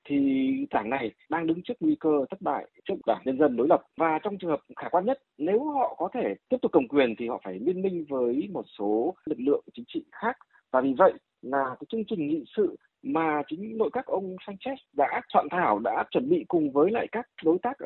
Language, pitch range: Vietnamese, 145-235 Hz